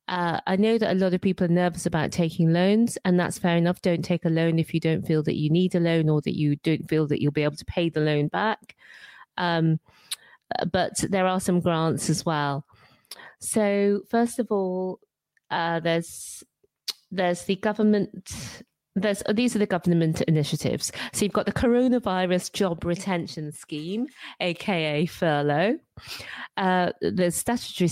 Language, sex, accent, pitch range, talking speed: English, female, British, 165-195 Hz, 170 wpm